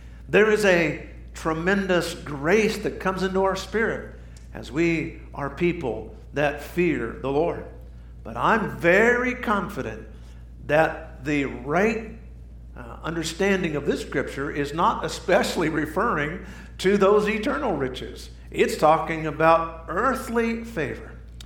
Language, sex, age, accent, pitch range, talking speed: English, male, 50-69, American, 110-175 Hz, 120 wpm